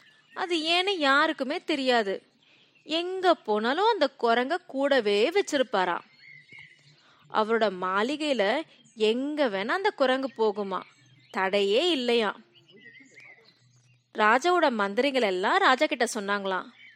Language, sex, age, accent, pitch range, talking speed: Tamil, female, 20-39, native, 210-325 Hz, 90 wpm